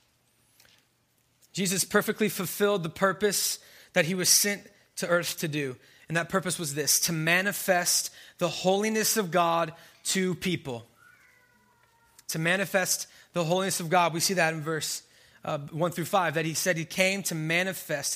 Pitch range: 140-180 Hz